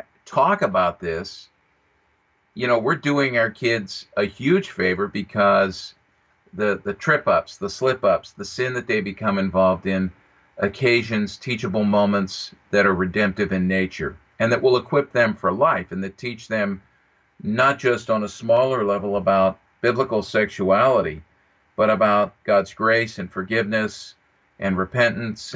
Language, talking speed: English, 150 wpm